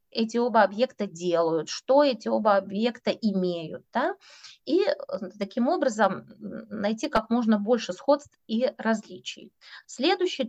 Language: Russian